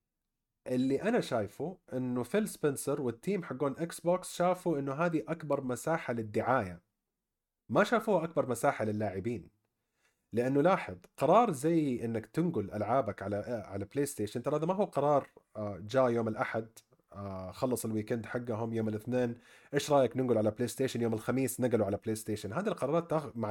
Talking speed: 155 wpm